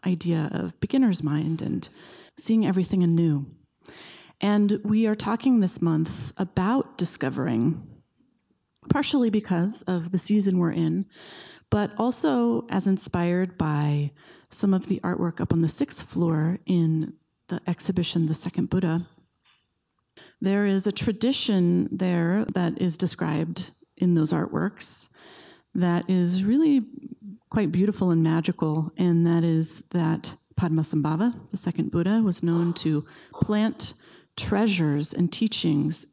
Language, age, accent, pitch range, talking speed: English, 30-49, American, 165-205 Hz, 125 wpm